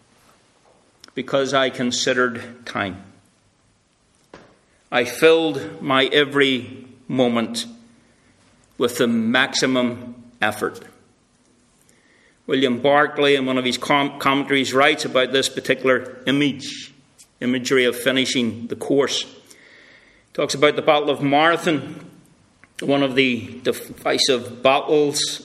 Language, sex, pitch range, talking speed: English, male, 120-145 Hz, 95 wpm